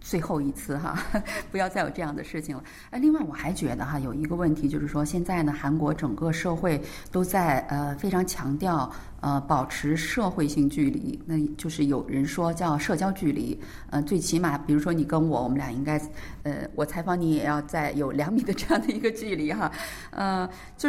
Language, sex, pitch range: Chinese, female, 150-195 Hz